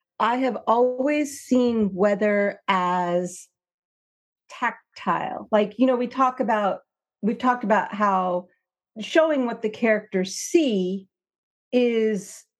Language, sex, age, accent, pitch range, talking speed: English, female, 40-59, American, 200-255 Hz, 110 wpm